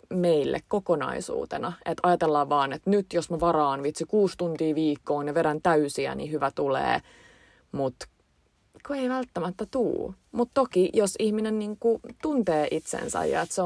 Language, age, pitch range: Finnish, 30-49, 150-185 Hz